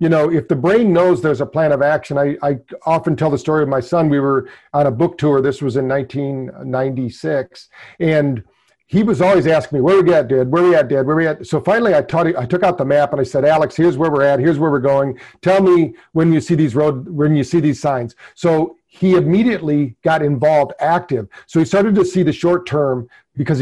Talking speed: 250 wpm